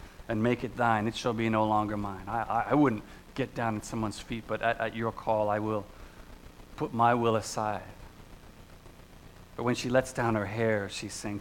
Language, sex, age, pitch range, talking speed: English, male, 40-59, 100-120 Hz, 205 wpm